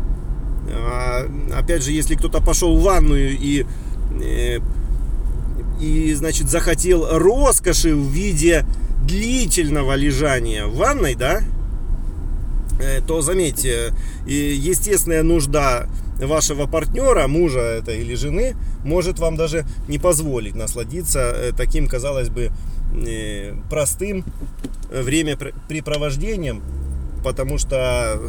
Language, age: Russian, 30-49